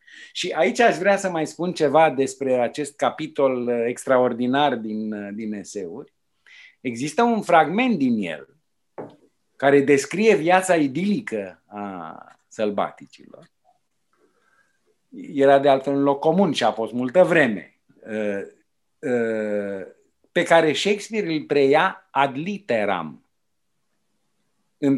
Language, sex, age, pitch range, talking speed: English, male, 50-69, 120-165 Hz, 110 wpm